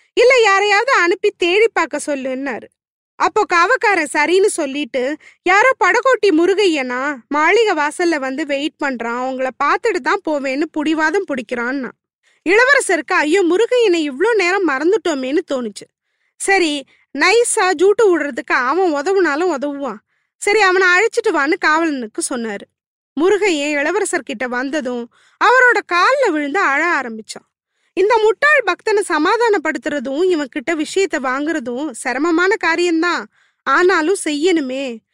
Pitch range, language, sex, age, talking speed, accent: 280-390 Hz, Tamil, female, 20-39, 110 wpm, native